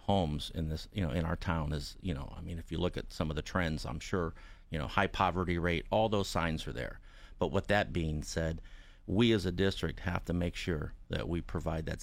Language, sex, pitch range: English, male, 80-95 Hz